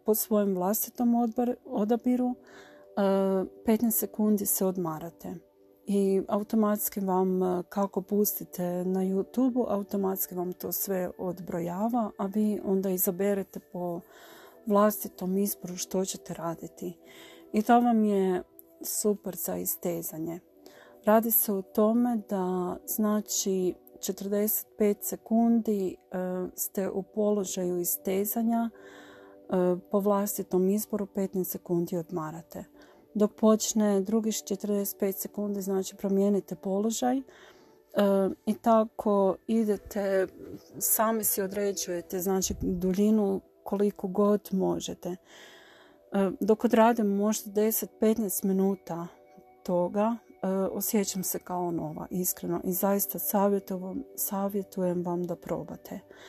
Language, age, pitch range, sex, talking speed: Croatian, 40-59, 185-210 Hz, female, 100 wpm